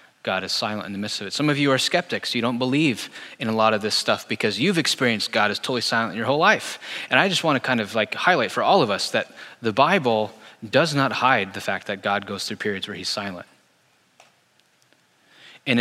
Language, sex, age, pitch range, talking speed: English, male, 20-39, 105-125 Hz, 230 wpm